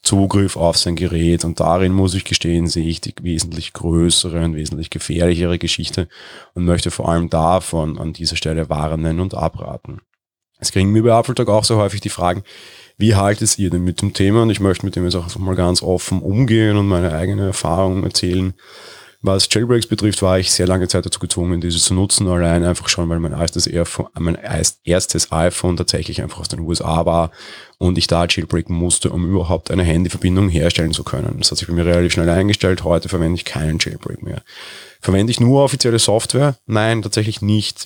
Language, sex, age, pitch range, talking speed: German, male, 30-49, 85-100 Hz, 200 wpm